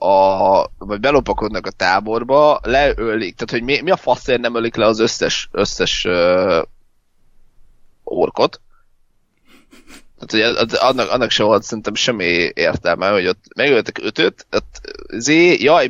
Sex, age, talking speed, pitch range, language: male, 20-39, 135 wpm, 115-155 Hz, Hungarian